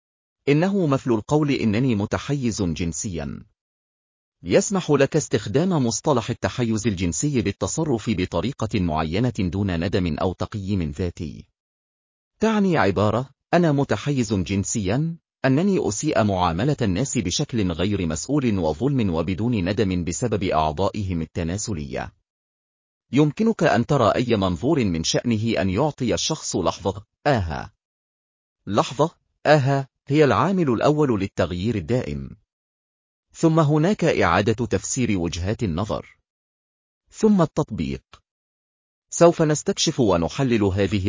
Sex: male